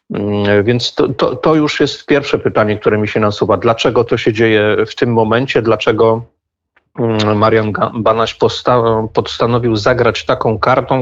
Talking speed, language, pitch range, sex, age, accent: 140 wpm, Polish, 110-120 Hz, male, 40-59, native